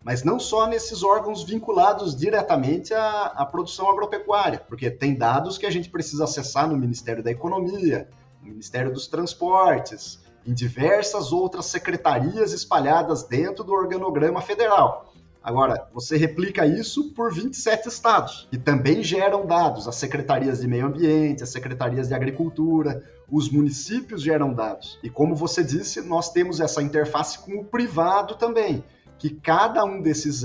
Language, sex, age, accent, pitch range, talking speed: Portuguese, male, 30-49, Brazilian, 140-225 Hz, 150 wpm